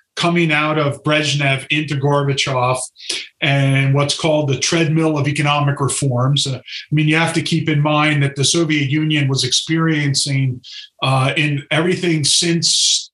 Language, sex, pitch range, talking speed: English, male, 140-160 Hz, 145 wpm